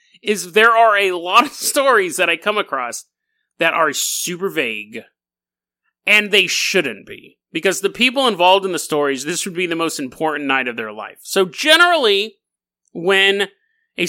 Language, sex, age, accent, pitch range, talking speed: English, male, 30-49, American, 150-210 Hz, 170 wpm